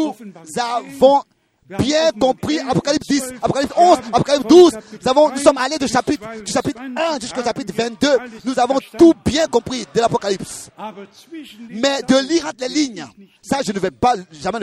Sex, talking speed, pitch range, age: male, 170 wpm, 170-260 Hz, 40-59